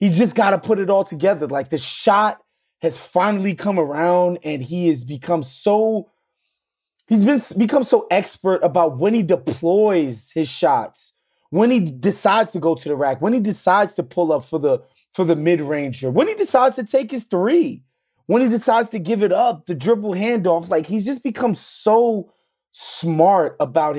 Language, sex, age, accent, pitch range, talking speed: English, male, 20-39, American, 165-225 Hz, 190 wpm